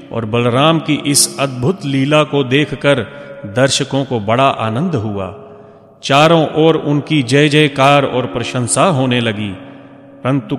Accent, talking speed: native, 130 wpm